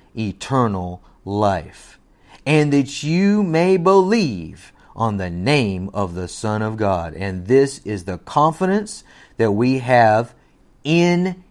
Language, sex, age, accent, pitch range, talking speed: English, male, 40-59, American, 100-145 Hz, 125 wpm